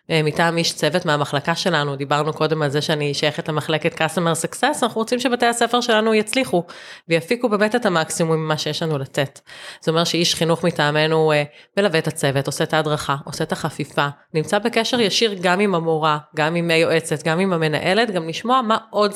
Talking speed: 180 wpm